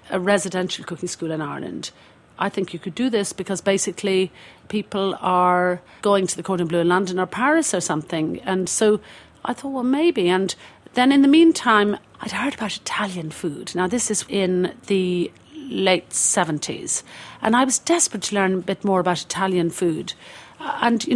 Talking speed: 180 wpm